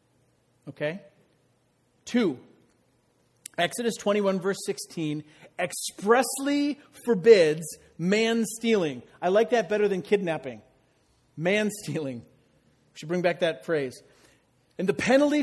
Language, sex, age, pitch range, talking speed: English, male, 40-59, 150-215 Hz, 95 wpm